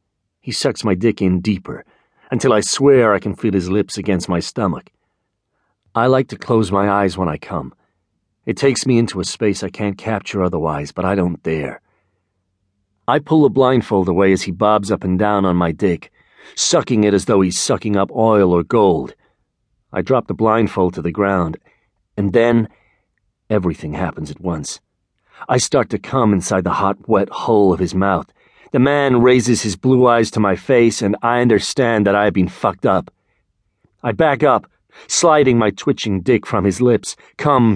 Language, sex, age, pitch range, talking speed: English, male, 40-59, 95-120 Hz, 190 wpm